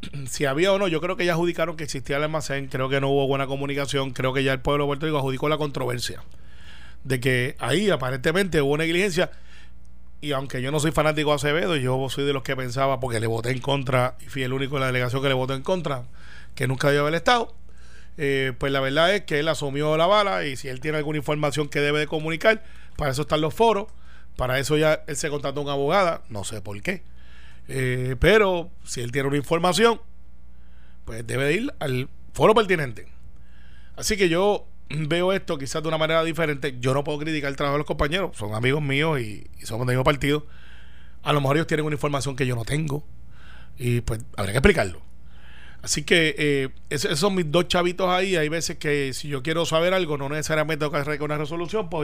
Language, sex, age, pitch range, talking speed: Spanish, male, 30-49, 125-155 Hz, 225 wpm